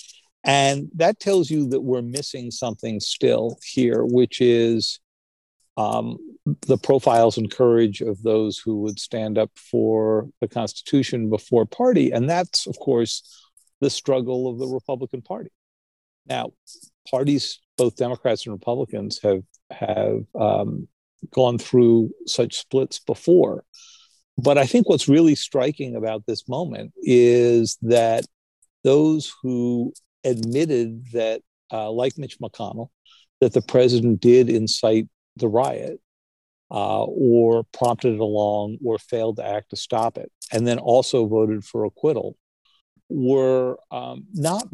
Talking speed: 135 wpm